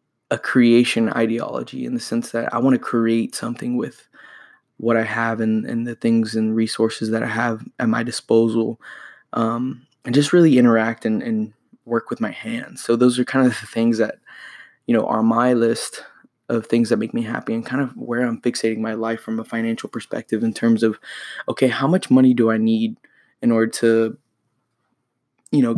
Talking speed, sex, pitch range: 200 wpm, male, 110-125 Hz